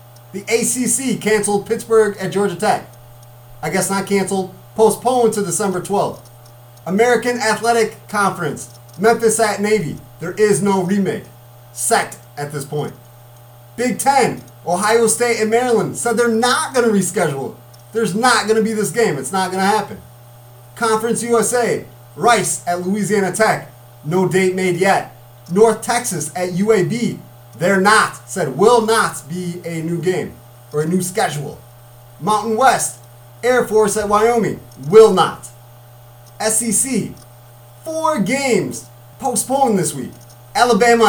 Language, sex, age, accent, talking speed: English, male, 30-49, American, 135 wpm